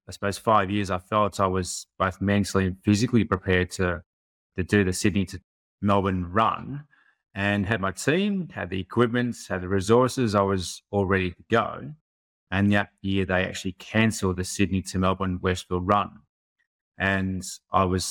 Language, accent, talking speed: English, Australian, 170 wpm